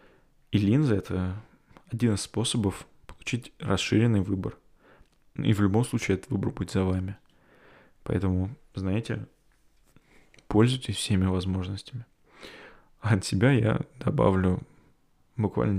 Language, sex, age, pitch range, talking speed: Russian, male, 20-39, 95-115 Hz, 105 wpm